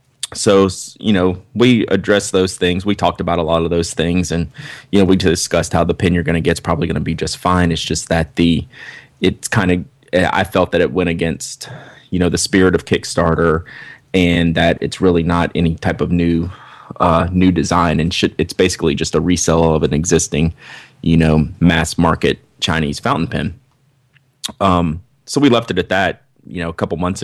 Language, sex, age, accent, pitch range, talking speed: English, male, 30-49, American, 85-95 Hz, 205 wpm